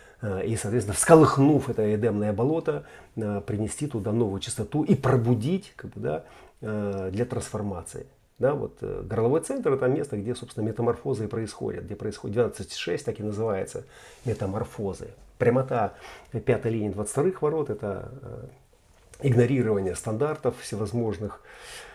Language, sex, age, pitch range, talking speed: Russian, male, 40-59, 105-125 Hz, 125 wpm